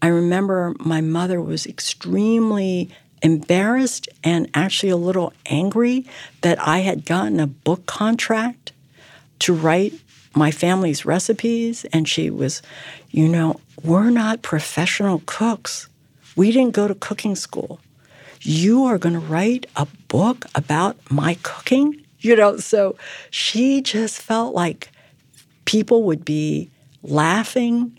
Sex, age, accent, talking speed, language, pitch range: female, 60-79, American, 130 wpm, English, 155-215 Hz